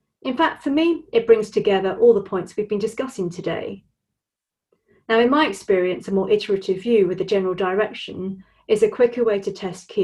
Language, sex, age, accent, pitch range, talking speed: English, female, 30-49, British, 190-235 Hz, 195 wpm